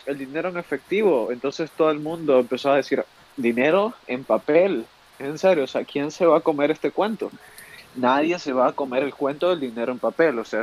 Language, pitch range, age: Spanish, 125-165 Hz, 20-39